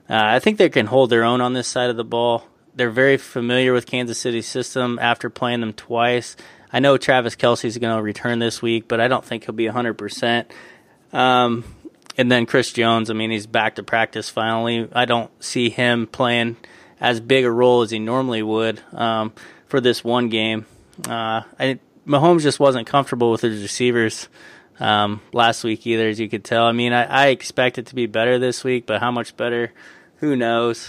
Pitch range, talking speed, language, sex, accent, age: 115-125 Hz, 205 wpm, English, male, American, 20-39